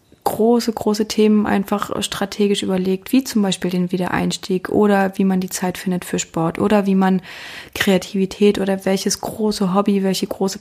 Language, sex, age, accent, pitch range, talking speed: German, female, 20-39, German, 190-210 Hz, 165 wpm